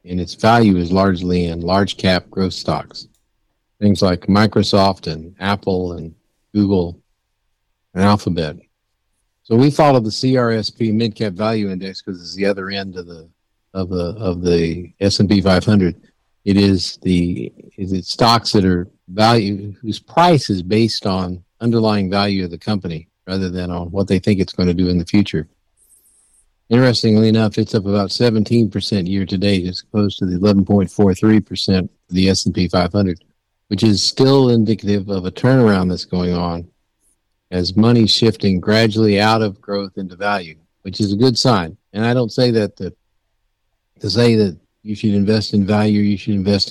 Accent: American